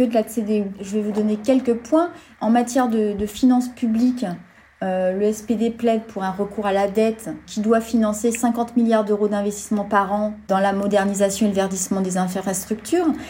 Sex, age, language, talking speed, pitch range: female, 30-49, French, 190 wpm, 210-255 Hz